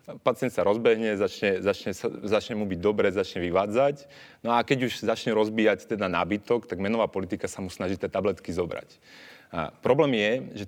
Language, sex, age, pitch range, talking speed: Slovak, male, 30-49, 100-125 Hz, 180 wpm